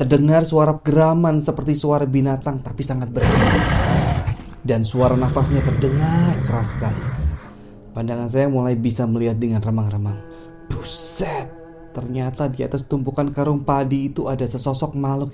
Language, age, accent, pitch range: Indonesian, 20-39, native, 120-145 Hz